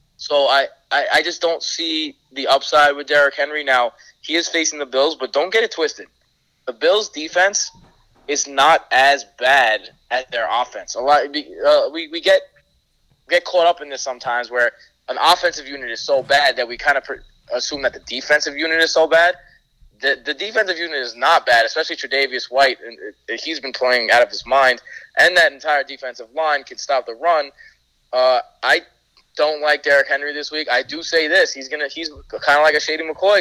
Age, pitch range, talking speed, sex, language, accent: 20-39, 135-165 Hz, 200 wpm, male, English, American